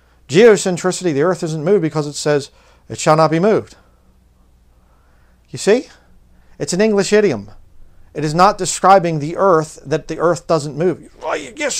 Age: 40-59